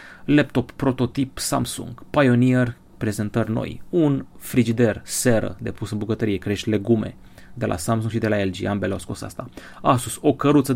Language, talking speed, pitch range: Romanian, 160 wpm, 105-130 Hz